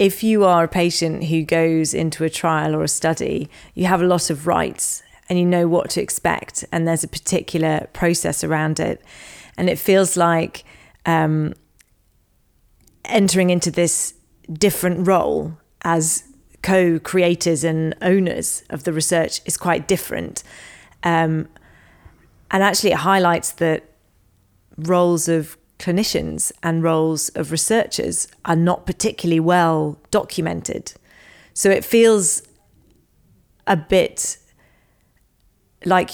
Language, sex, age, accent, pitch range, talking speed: English, female, 30-49, British, 160-180 Hz, 125 wpm